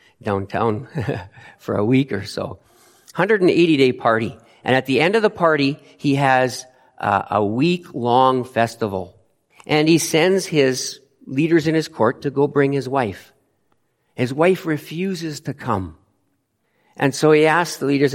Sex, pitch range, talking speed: male, 115-155 Hz, 150 wpm